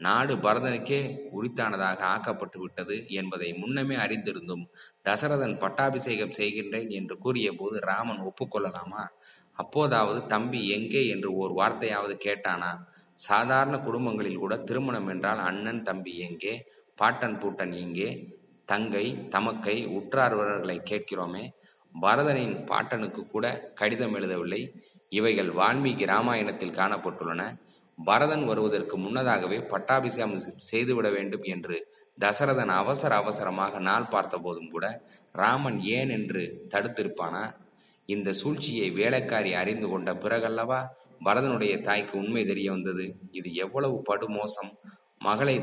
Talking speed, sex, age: 105 wpm, male, 20-39